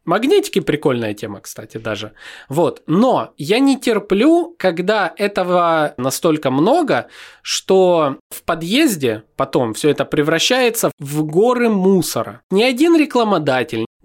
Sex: male